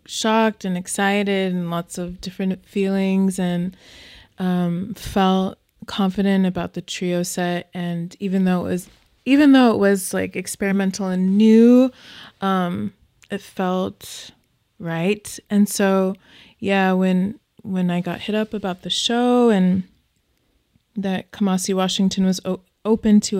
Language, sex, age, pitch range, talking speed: English, female, 20-39, 185-215 Hz, 135 wpm